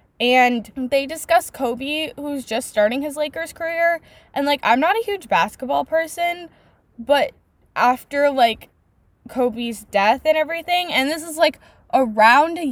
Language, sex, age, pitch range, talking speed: English, female, 10-29, 205-280 Hz, 145 wpm